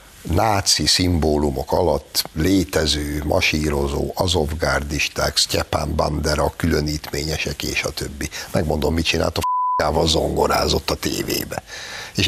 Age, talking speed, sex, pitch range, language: 60-79, 105 wpm, male, 75-95 Hz, Hungarian